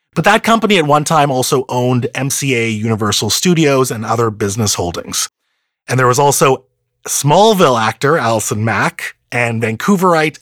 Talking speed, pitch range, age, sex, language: 145 wpm, 120-175 Hz, 30-49, male, English